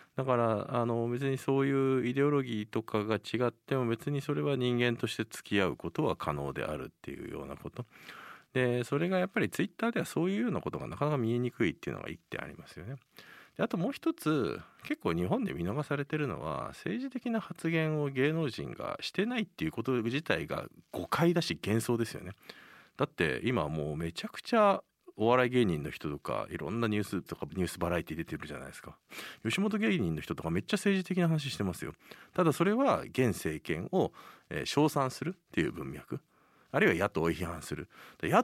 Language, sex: Japanese, male